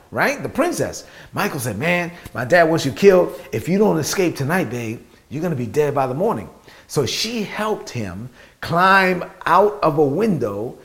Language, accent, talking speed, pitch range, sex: English, American, 190 wpm, 140-195 Hz, male